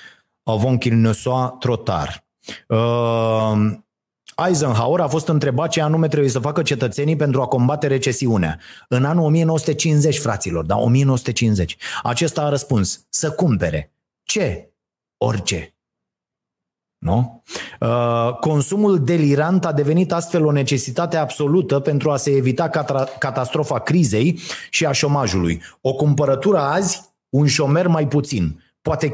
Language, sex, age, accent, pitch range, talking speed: Romanian, male, 30-49, native, 125-170 Hz, 120 wpm